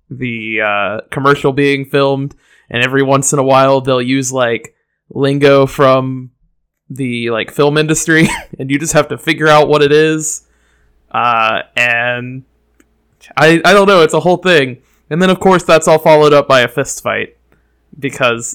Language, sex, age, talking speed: English, male, 20-39, 170 wpm